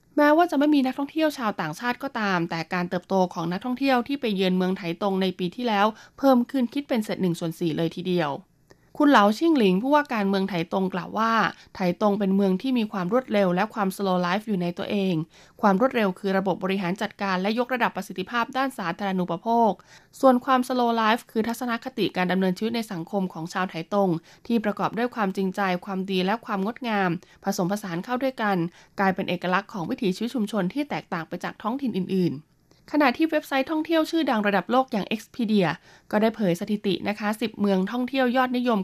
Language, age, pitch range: Thai, 20-39, 185-240 Hz